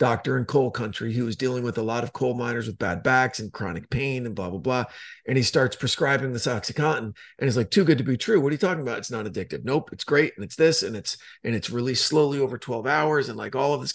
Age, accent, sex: 40-59, American, male